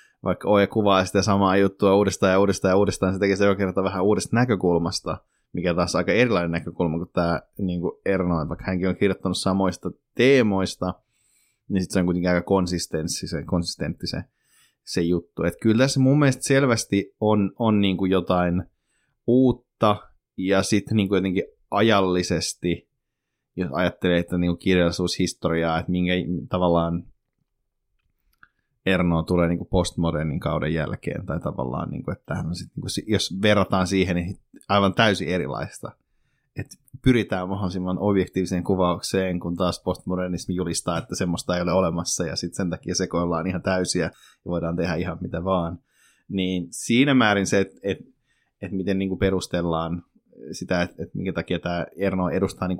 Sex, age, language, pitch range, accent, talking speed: male, 20-39, Finnish, 90-100 Hz, native, 150 wpm